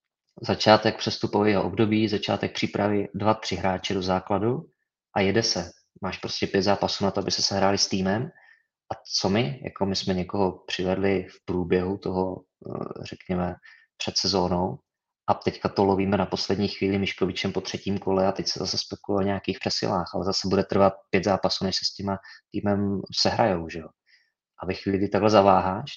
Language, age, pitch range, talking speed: Czech, 20-39, 95-105 Hz, 175 wpm